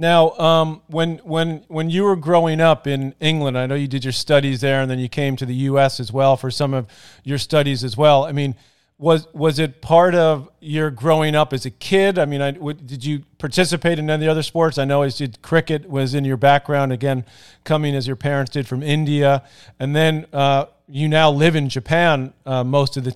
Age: 40-59